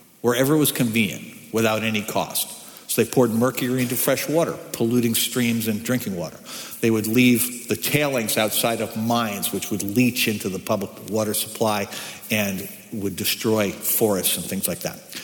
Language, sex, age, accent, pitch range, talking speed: English, male, 60-79, American, 110-165 Hz, 170 wpm